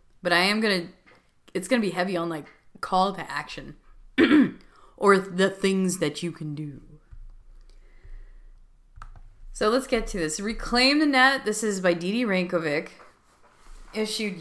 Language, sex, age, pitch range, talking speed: English, female, 20-39, 165-205 Hz, 150 wpm